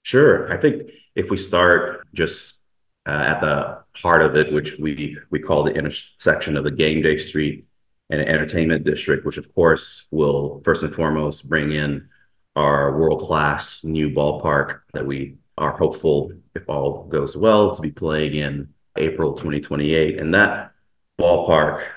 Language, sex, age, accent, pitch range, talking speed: English, male, 30-49, American, 75-80 Hz, 165 wpm